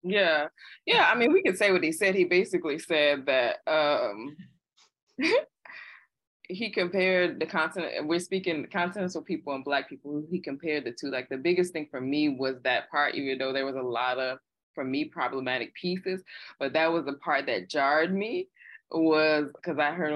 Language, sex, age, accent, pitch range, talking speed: English, female, 20-39, American, 130-155 Hz, 185 wpm